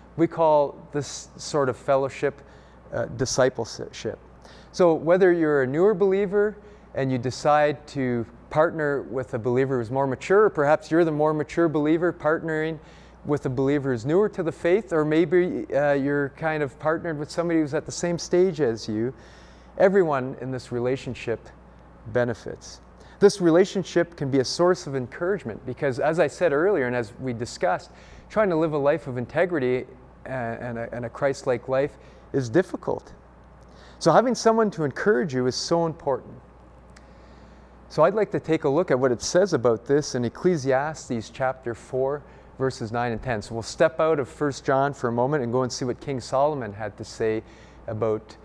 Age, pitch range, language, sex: 30-49, 115-160 Hz, English, male